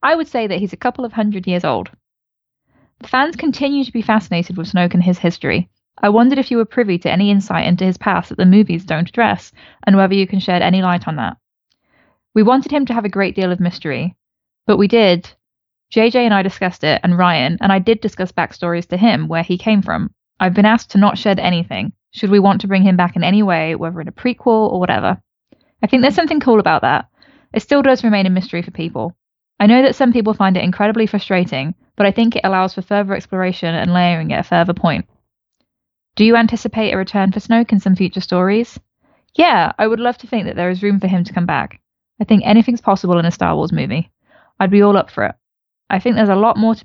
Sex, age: female, 10-29